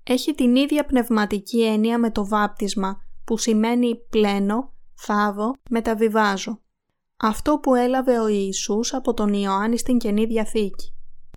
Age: 20-39